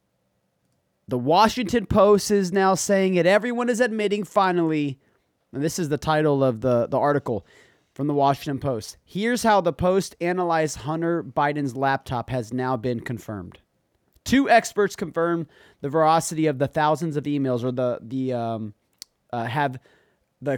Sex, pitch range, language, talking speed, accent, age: male, 135-200 Hz, English, 155 wpm, American, 30-49